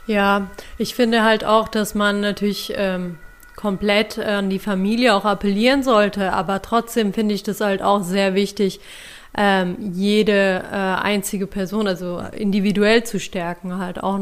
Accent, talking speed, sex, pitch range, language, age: German, 155 wpm, female, 195-220 Hz, German, 30-49